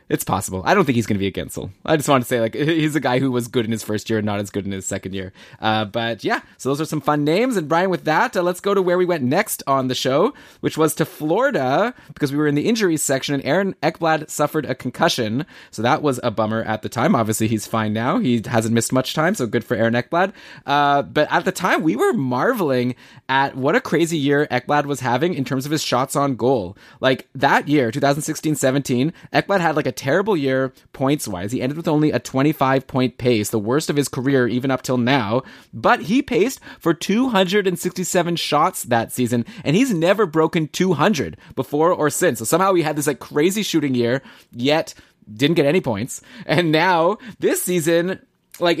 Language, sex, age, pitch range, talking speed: English, male, 20-39, 125-170 Hz, 225 wpm